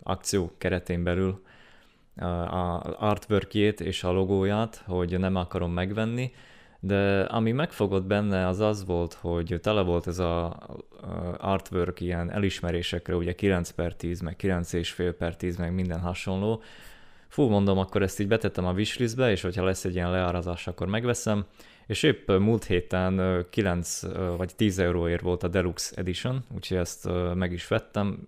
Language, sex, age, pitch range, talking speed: Hungarian, male, 20-39, 90-110 Hz, 150 wpm